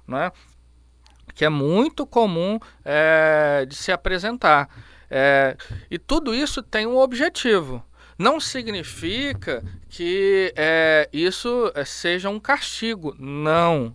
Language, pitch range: Portuguese, 135-210 Hz